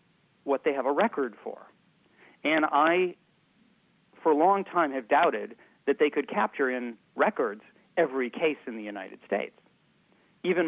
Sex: male